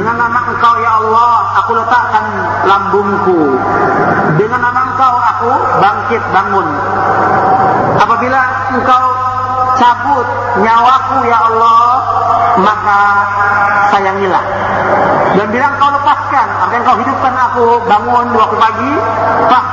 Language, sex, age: Malay, male, 40-59